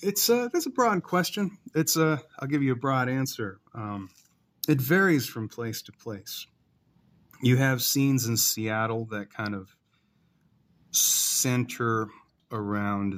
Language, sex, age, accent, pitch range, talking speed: English, male, 30-49, American, 95-135 Hz, 140 wpm